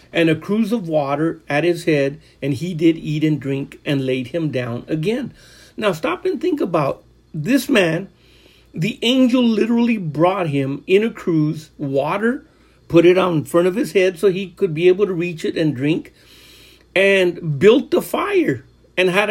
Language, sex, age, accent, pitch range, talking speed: English, male, 50-69, American, 155-205 Hz, 185 wpm